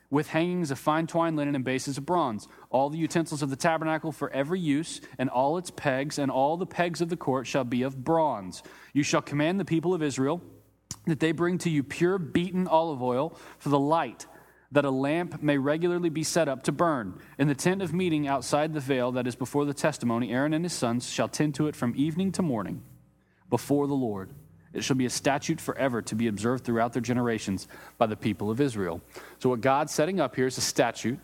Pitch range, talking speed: 125-165 Hz, 225 wpm